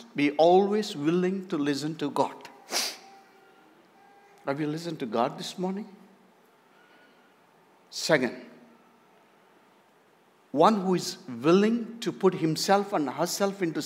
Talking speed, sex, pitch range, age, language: 110 wpm, male, 145-205 Hz, 60-79, English